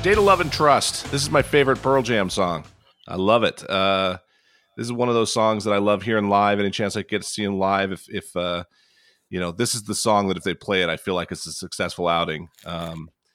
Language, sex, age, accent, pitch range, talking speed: English, male, 40-59, American, 95-120 Hz, 255 wpm